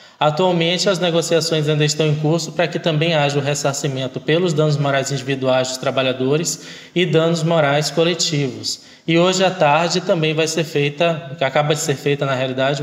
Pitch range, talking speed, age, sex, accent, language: 135-160 Hz, 175 wpm, 20-39, male, Brazilian, Portuguese